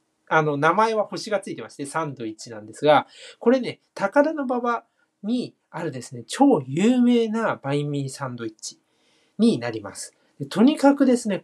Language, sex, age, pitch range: Japanese, male, 40-59, 145-235 Hz